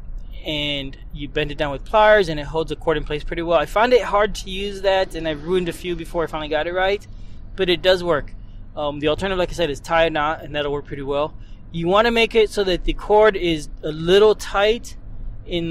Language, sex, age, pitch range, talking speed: English, male, 20-39, 125-175 Hz, 255 wpm